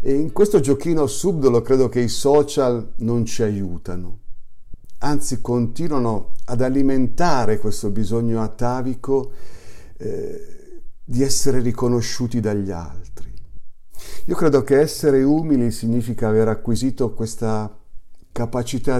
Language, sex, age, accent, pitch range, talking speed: Italian, male, 50-69, native, 100-130 Hz, 110 wpm